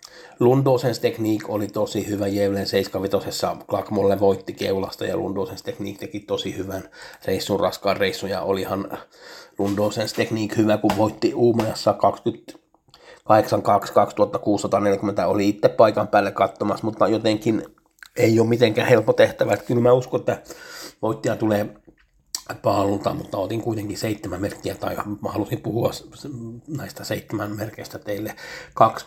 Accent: native